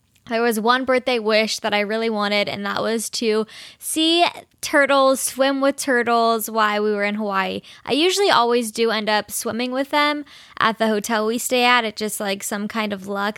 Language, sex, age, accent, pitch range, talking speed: English, female, 10-29, American, 225-285 Hz, 200 wpm